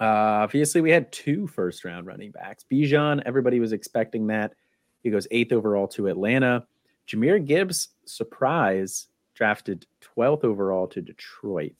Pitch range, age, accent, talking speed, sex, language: 100-125 Hz, 30-49, American, 135 wpm, male, English